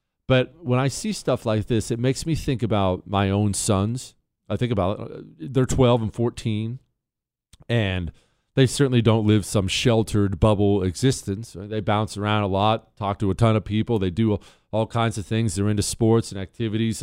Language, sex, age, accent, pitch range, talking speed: English, male, 40-59, American, 105-130 Hz, 190 wpm